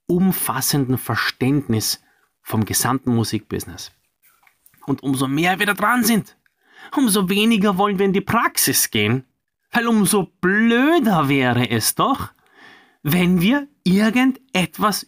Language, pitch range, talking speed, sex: German, 125-180 Hz, 115 wpm, male